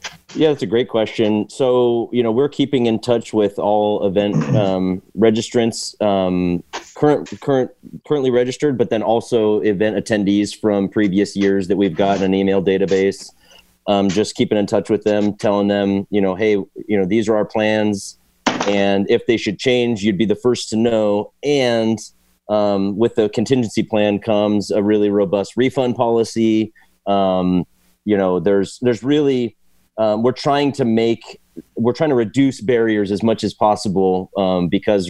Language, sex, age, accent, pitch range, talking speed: English, male, 30-49, American, 100-115 Hz, 170 wpm